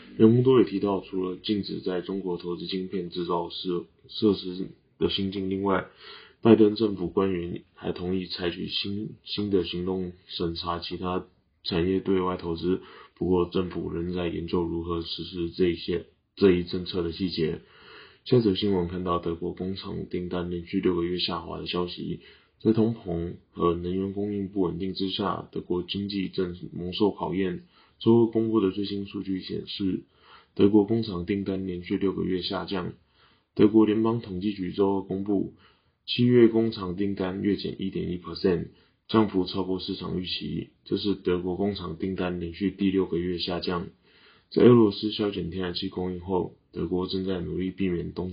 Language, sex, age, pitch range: Chinese, male, 20-39, 90-100 Hz